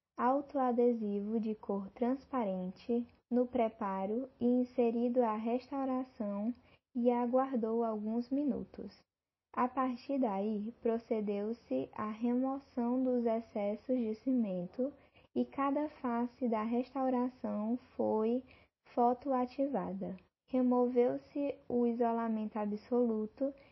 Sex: female